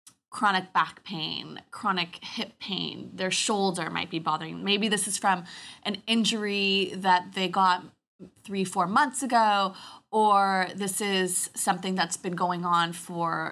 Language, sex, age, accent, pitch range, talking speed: English, female, 20-39, American, 175-200 Hz, 145 wpm